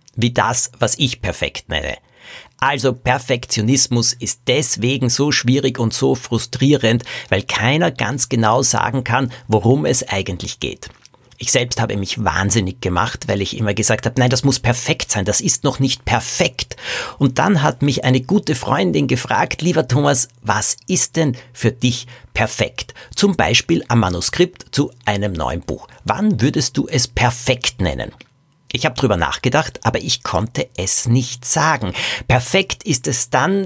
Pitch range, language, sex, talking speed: 110-140 Hz, German, male, 160 wpm